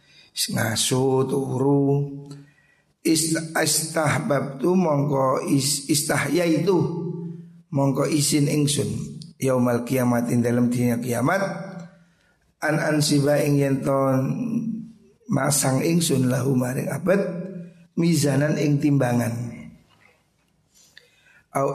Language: Indonesian